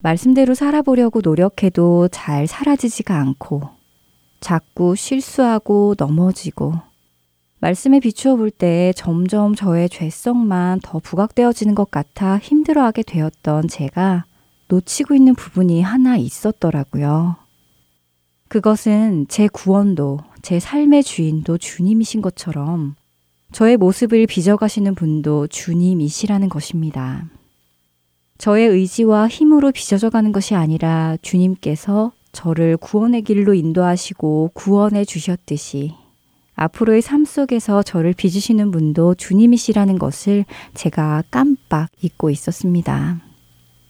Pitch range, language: 155-215 Hz, Korean